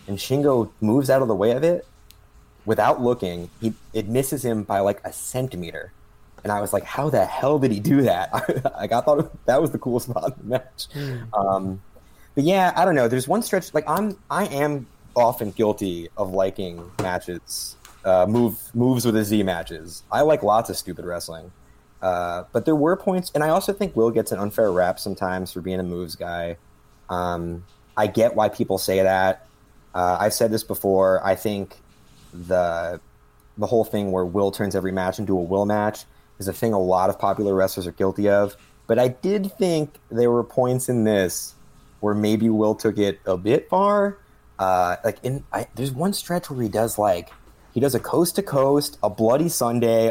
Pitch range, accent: 95-145 Hz, American